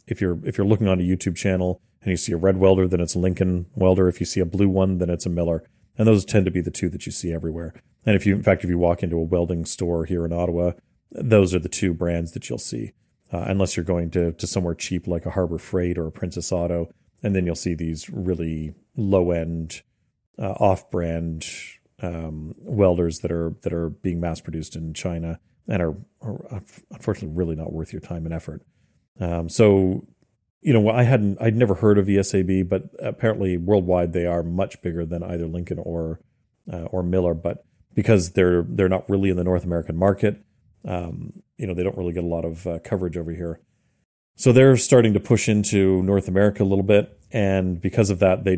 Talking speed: 215 wpm